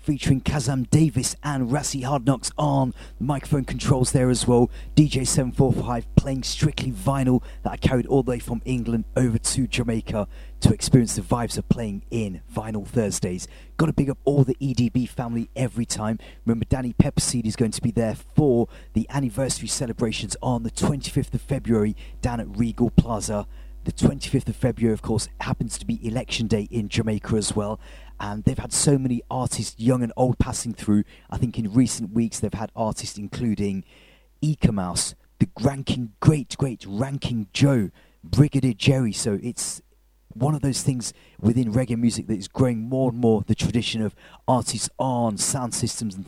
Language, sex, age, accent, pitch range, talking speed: English, male, 30-49, British, 110-135 Hz, 180 wpm